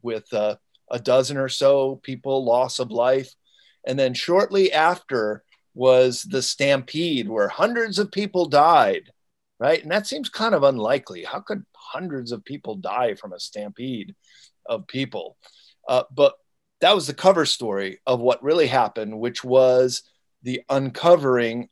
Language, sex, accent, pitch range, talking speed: English, male, American, 120-150 Hz, 150 wpm